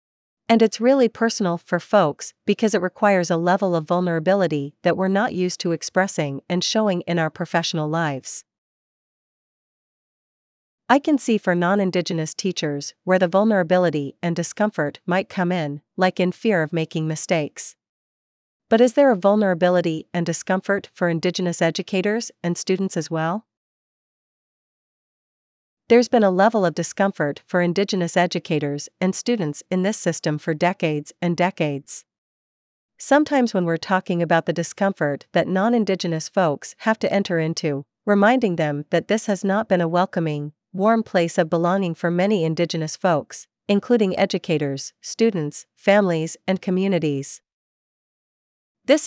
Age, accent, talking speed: 40-59, American, 140 wpm